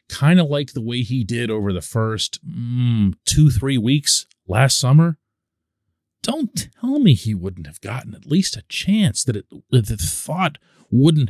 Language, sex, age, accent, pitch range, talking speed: English, male, 40-59, American, 95-135 Hz, 170 wpm